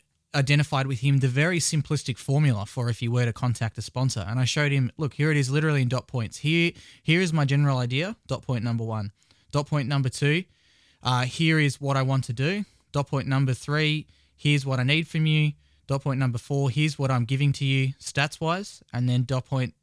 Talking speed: 225 wpm